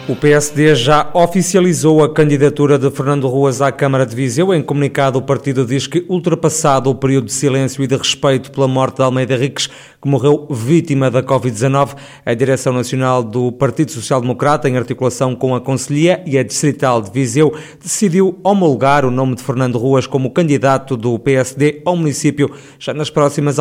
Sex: male